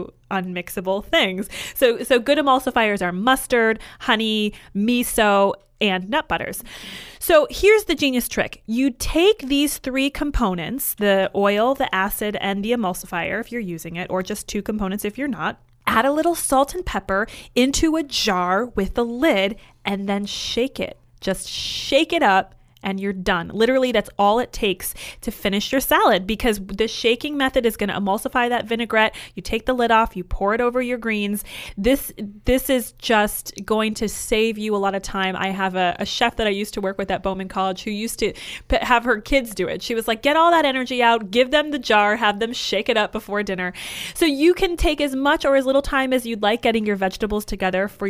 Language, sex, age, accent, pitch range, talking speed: English, female, 30-49, American, 195-255 Hz, 205 wpm